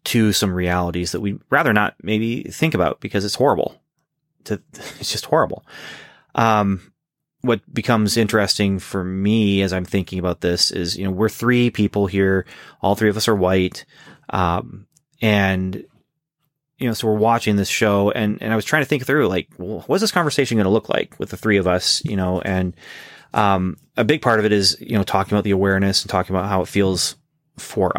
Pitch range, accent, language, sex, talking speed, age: 95-115 Hz, American, English, male, 205 wpm, 30-49